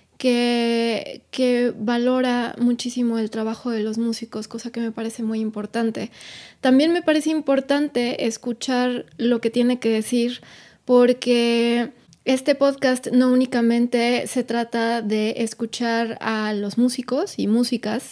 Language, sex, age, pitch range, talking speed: Spanish, female, 20-39, 225-255 Hz, 130 wpm